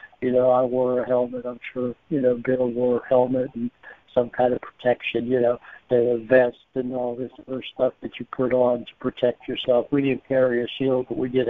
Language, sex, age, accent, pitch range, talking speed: English, male, 60-79, American, 120-130 Hz, 235 wpm